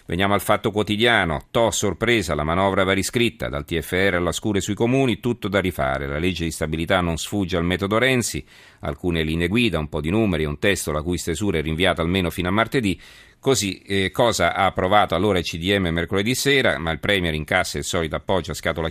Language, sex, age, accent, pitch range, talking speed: Italian, male, 40-59, native, 80-105 Hz, 215 wpm